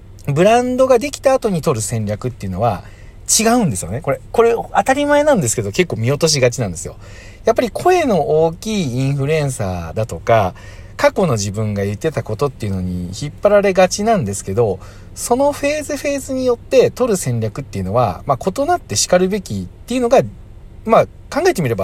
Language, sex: Japanese, male